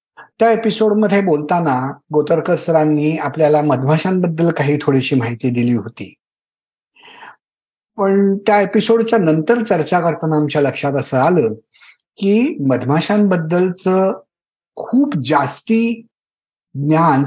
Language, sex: Marathi, male